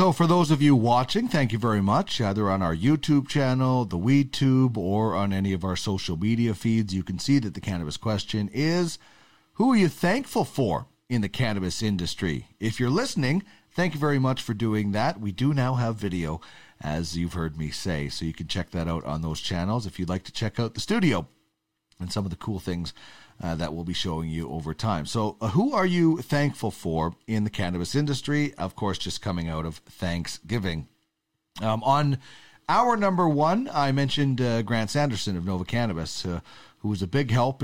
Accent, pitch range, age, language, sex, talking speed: American, 90-140 Hz, 40-59, English, male, 205 wpm